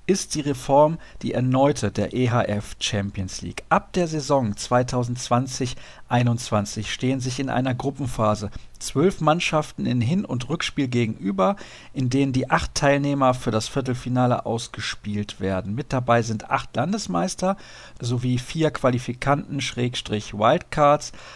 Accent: German